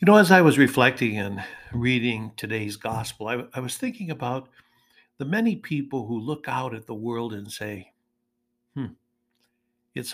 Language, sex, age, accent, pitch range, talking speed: English, male, 60-79, American, 110-120 Hz, 165 wpm